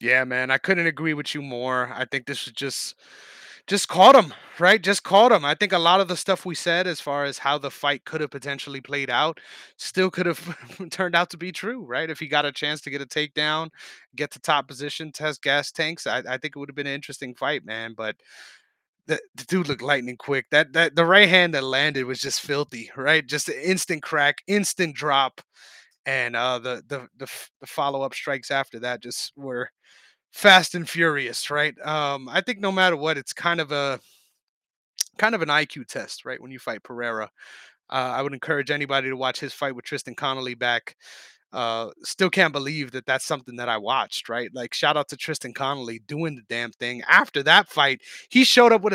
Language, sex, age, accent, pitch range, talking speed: English, male, 30-49, American, 135-180 Hz, 220 wpm